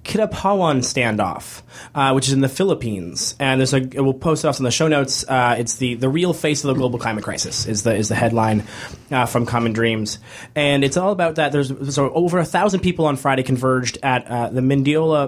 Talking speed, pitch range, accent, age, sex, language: 210 wpm, 125-155 Hz, American, 20-39, male, English